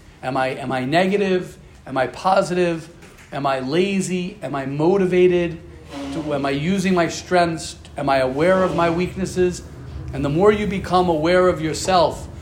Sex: male